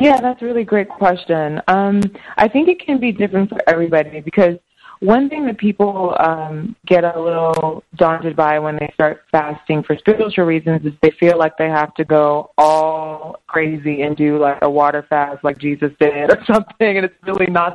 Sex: female